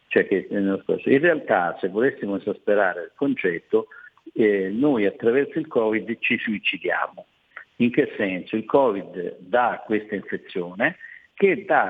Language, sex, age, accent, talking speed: Italian, male, 50-69, native, 120 wpm